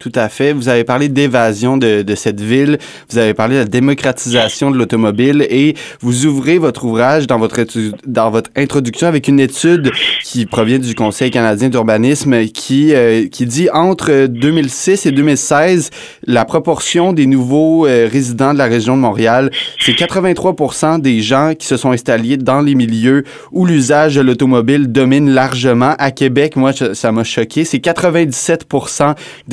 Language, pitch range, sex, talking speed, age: French, 115-145 Hz, male, 165 wpm, 30-49